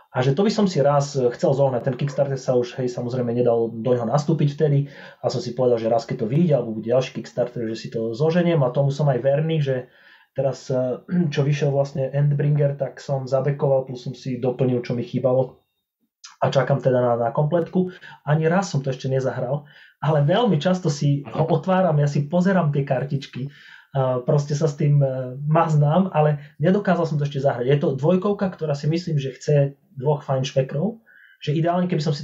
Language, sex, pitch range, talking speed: Slovak, male, 130-150 Hz, 200 wpm